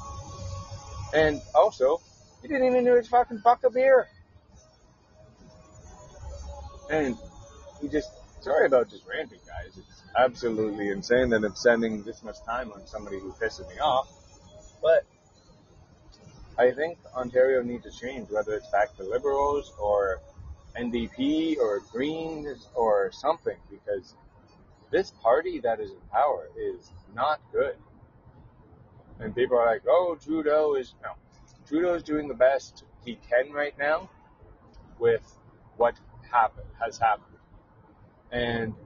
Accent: American